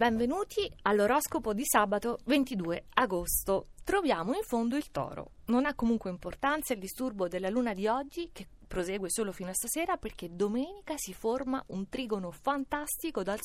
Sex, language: female, Italian